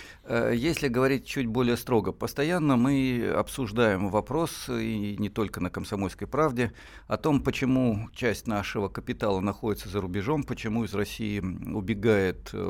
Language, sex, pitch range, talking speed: Russian, male, 95-120 Hz, 130 wpm